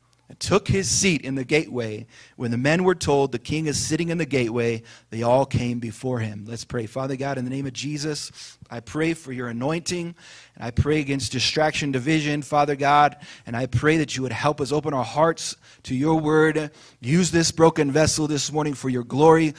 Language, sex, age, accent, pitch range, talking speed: English, male, 30-49, American, 125-170 Hz, 210 wpm